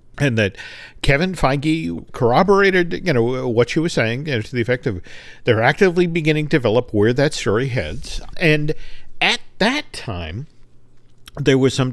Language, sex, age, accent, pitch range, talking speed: English, male, 50-69, American, 110-140 Hz, 155 wpm